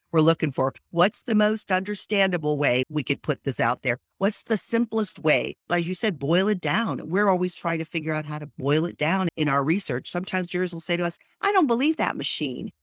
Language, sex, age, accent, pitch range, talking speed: English, female, 50-69, American, 145-190 Hz, 230 wpm